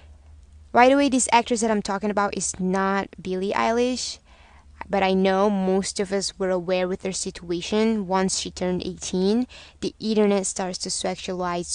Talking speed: 165 wpm